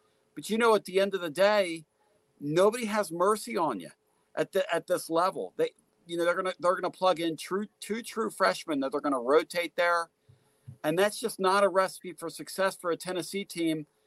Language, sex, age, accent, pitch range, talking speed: English, male, 50-69, American, 165-205 Hz, 220 wpm